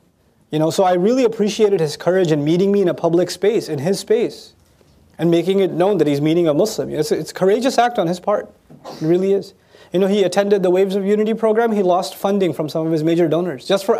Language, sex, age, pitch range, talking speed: English, male, 30-49, 165-220 Hz, 250 wpm